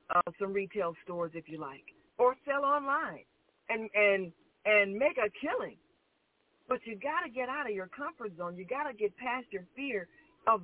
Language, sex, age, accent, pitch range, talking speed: English, female, 40-59, American, 180-290 Hz, 190 wpm